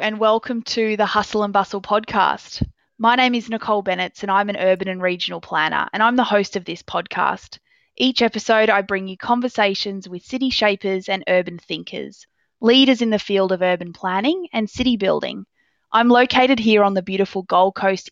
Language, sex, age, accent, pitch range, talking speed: English, female, 20-39, Australian, 190-245 Hz, 190 wpm